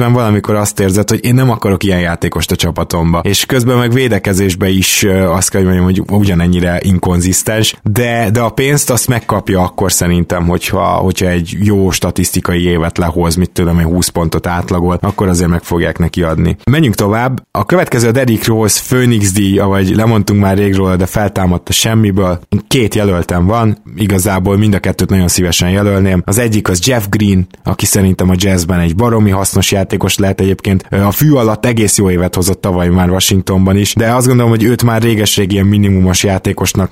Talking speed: 180 wpm